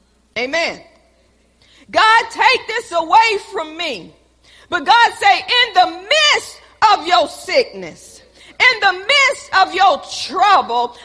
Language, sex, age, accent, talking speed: English, female, 40-59, American, 120 wpm